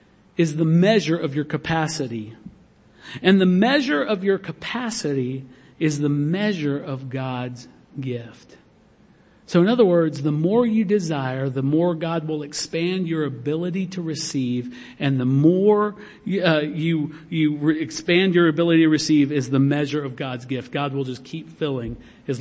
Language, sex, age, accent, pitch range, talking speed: English, male, 50-69, American, 145-195 Hz, 155 wpm